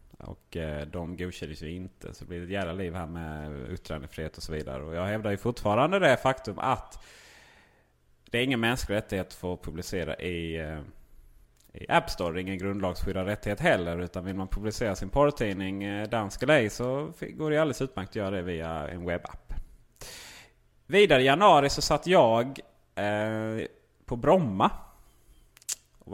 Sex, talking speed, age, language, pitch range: male, 160 wpm, 30-49, Swedish, 85-110 Hz